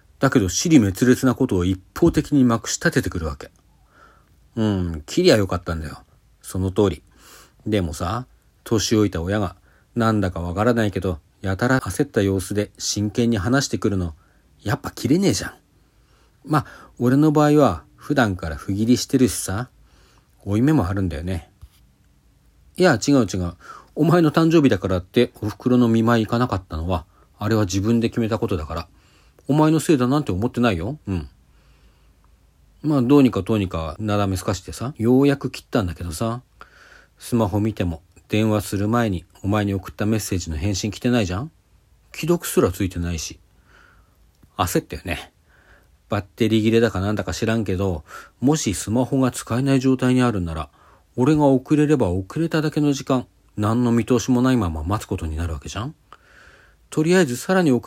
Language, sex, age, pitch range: Japanese, male, 40-59, 90-125 Hz